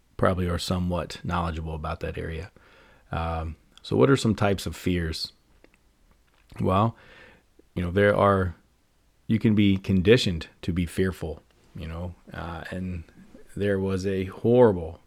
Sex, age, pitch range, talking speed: male, 30-49, 85-100 Hz, 140 wpm